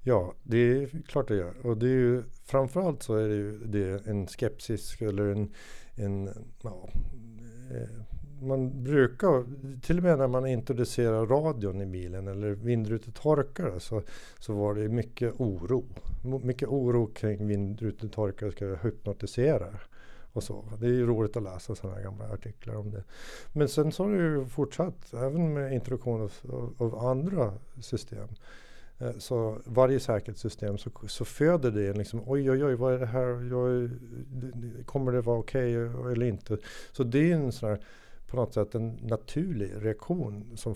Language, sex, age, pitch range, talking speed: Swedish, male, 60-79, 105-130 Hz, 170 wpm